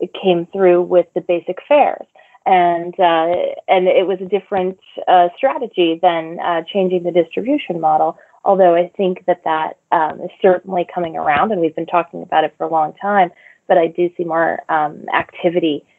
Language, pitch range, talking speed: English, 175-200 Hz, 185 wpm